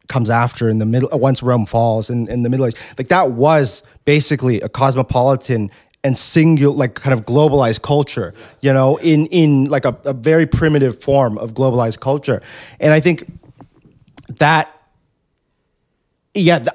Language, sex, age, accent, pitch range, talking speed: English, male, 30-49, American, 120-145 Hz, 160 wpm